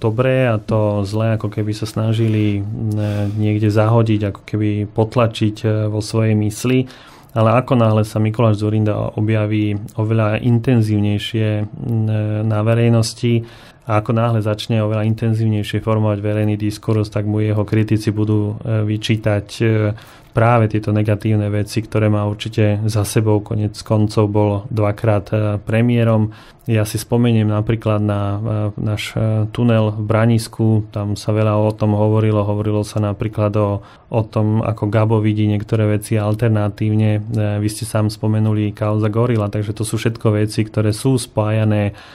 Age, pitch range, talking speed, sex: 30-49, 105-115 Hz, 140 wpm, male